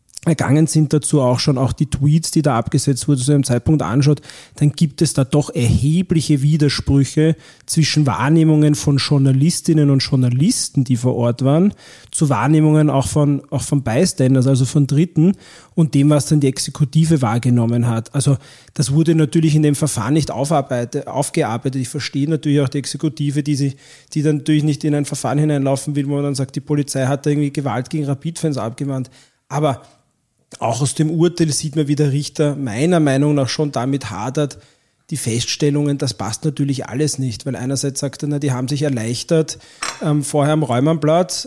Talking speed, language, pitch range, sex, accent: 185 wpm, German, 135-155 Hz, male, German